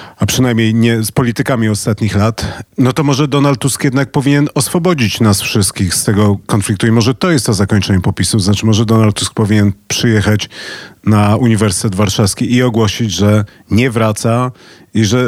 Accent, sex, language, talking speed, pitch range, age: native, male, Polish, 170 wpm, 110-135 Hz, 40-59